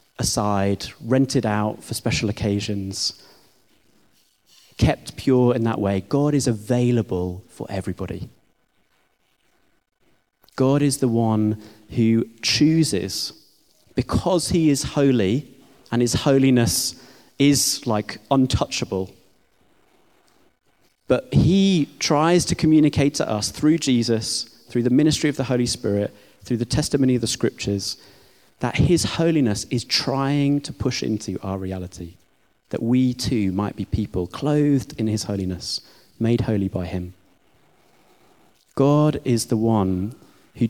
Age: 30-49